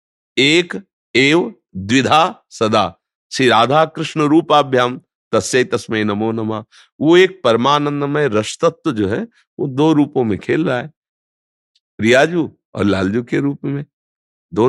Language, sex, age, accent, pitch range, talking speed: Hindi, male, 50-69, native, 95-125 Hz, 135 wpm